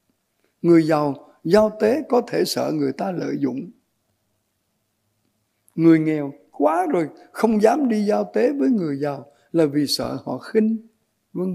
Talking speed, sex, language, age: 150 wpm, male, Vietnamese, 60-79